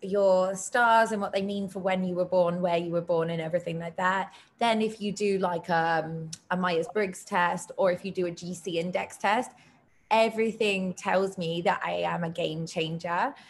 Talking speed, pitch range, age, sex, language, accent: 200 wpm, 180-220 Hz, 20-39, female, English, British